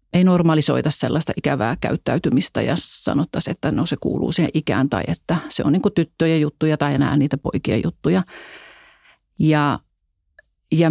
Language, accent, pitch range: Finnish, native, 150-170 Hz